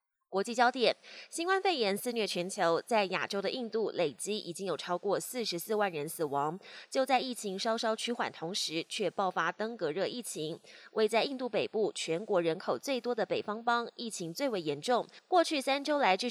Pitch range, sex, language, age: 175-240 Hz, female, Chinese, 20-39